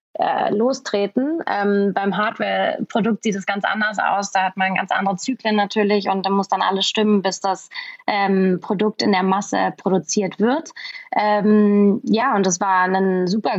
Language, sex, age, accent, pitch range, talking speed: German, female, 20-39, German, 195-225 Hz, 170 wpm